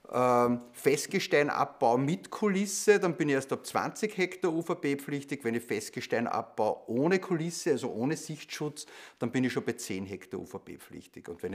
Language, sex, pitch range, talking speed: German, male, 125-160 Hz, 155 wpm